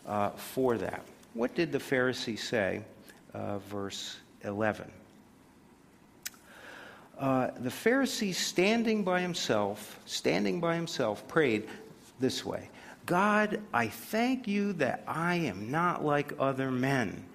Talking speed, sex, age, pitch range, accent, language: 120 wpm, male, 50-69, 110-155 Hz, American, English